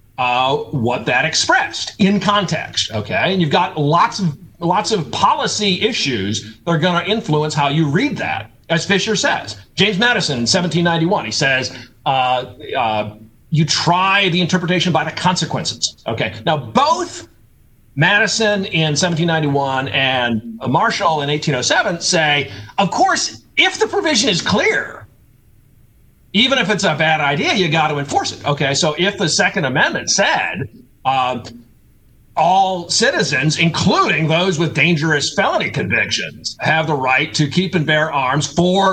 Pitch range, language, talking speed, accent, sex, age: 135-190 Hz, English, 150 wpm, American, male, 40-59